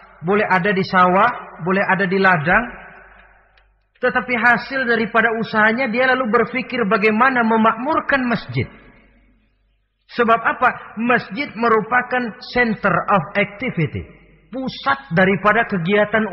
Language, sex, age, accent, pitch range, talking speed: Indonesian, male, 40-59, native, 180-230 Hz, 105 wpm